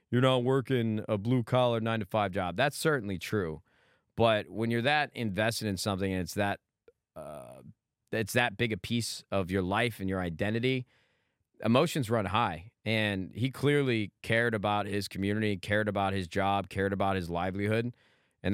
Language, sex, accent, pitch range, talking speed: English, male, American, 100-120 Hz, 165 wpm